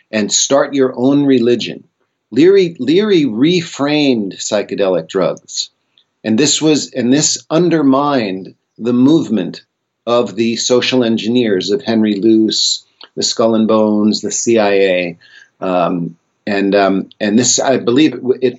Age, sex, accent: 50-69, male, American